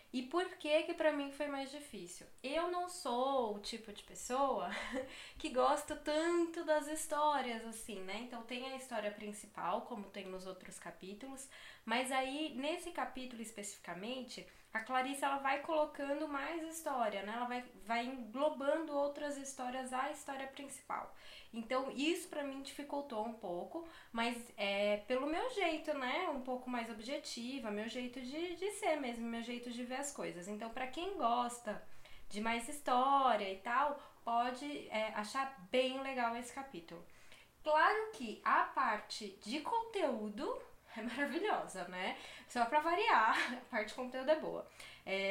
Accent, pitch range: Brazilian, 210-280 Hz